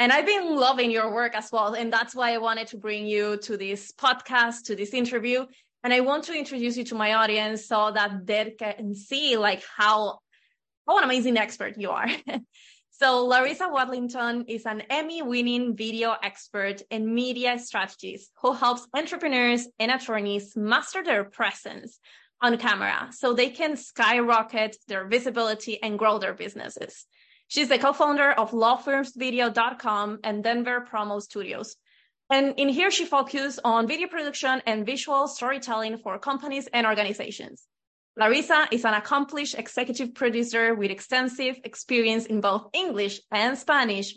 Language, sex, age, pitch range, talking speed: English, female, 20-39, 215-260 Hz, 155 wpm